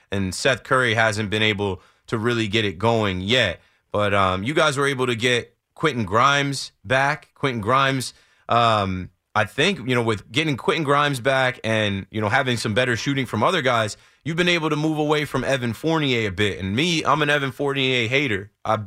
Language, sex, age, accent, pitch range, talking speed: English, male, 20-39, American, 115-150 Hz, 205 wpm